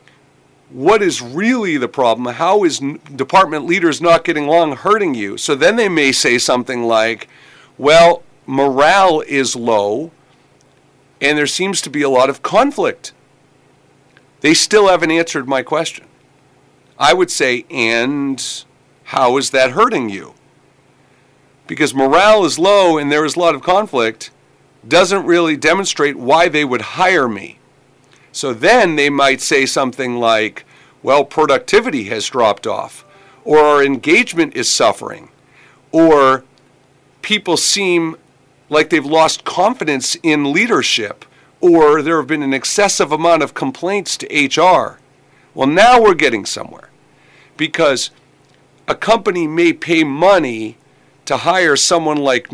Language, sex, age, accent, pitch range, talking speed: English, male, 40-59, American, 135-170 Hz, 135 wpm